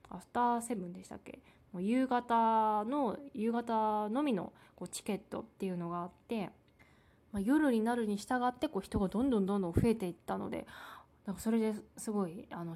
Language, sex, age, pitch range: Japanese, female, 20-39, 185-225 Hz